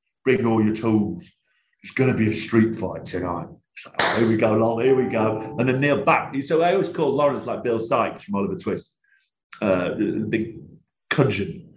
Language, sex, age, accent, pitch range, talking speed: English, male, 40-59, British, 105-135 Hz, 210 wpm